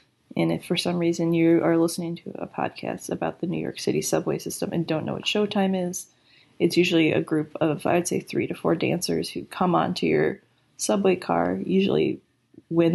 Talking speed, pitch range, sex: 205 wpm, 150-185 Hz, female